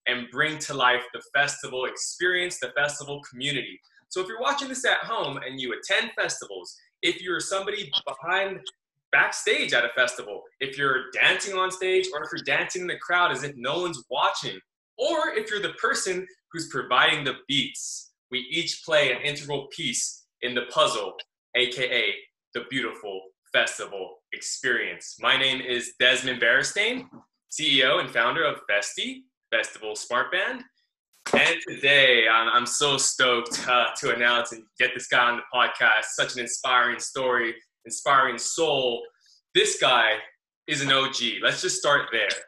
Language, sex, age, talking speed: English, male, 20-39, 160 wpm